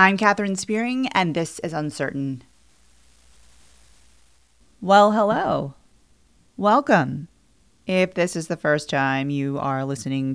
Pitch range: 135-190 Hz